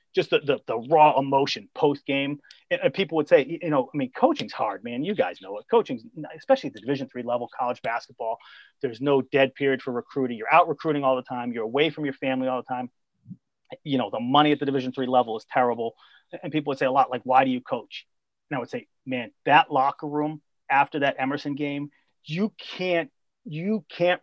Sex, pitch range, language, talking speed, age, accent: male, 130-185 Hz, English, 225 wpm, 30-49, American